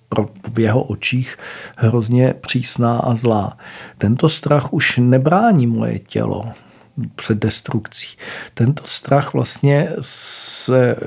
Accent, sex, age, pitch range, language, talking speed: native, male, 50-69, 110-130 Hz, Czech, 105 wpm